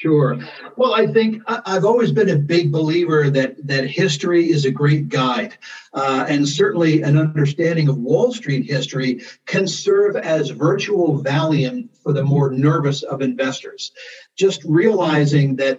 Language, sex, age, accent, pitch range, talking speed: English, male, 50-69, American, 140-170 Hz, 150 wpm